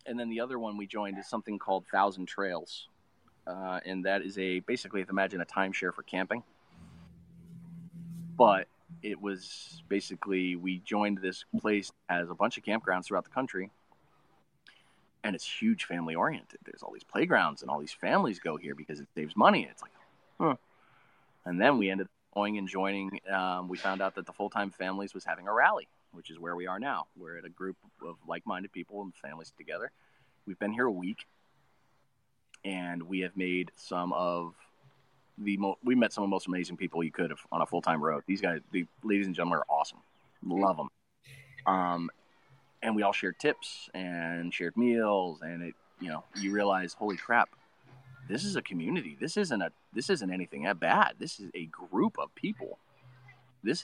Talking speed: 190 wpm